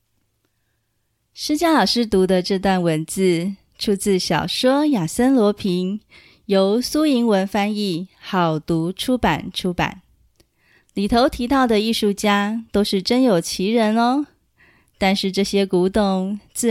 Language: Chinese